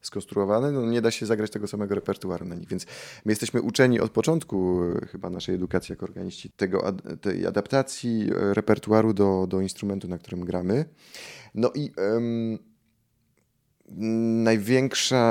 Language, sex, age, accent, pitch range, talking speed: Polish, male, 20-39, native, 90-110 Hz, 140 wpm